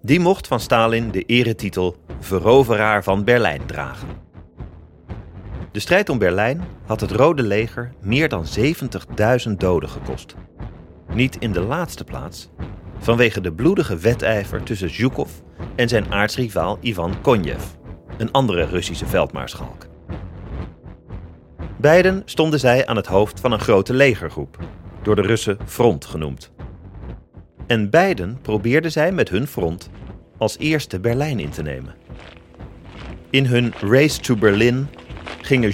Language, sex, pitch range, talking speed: Dutch, male, 90-125 Hz, 130 wpm